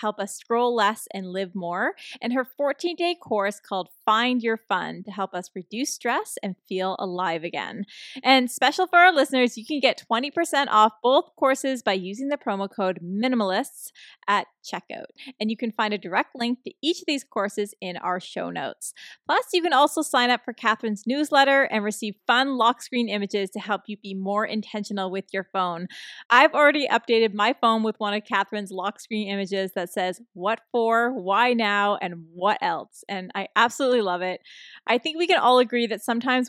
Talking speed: 195 wpm